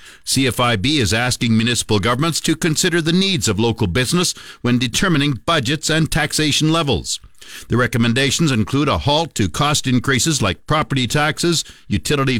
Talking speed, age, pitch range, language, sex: 145 wpm, 60-79, 125-160 Hz, English, male